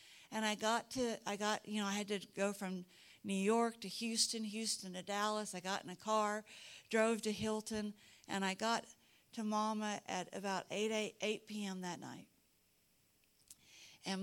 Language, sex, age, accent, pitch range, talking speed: English, female, 60-79, American, 185-215 Hz, 175 wpm